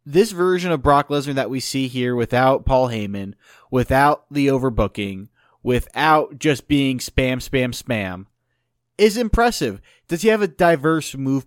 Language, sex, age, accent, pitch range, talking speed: English, male, 30-49, American, 120-150 Hz, 150 wpm